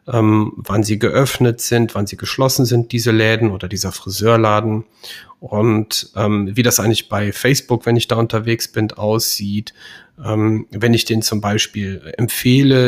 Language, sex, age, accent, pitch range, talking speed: German, male, 40-59, German, 110-125 Hz, 160 wpm